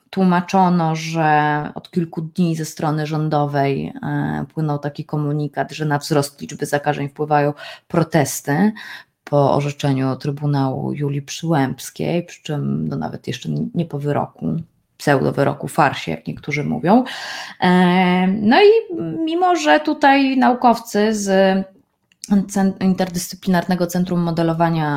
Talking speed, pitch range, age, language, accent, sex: 115 wpm, 150-195 Hz, 20-39, Polish, native, female